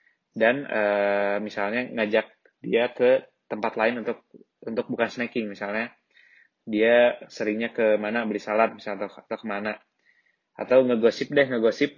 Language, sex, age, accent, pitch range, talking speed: Indonesian, male, 20-39, native, 105-120 Hz, 140 wpm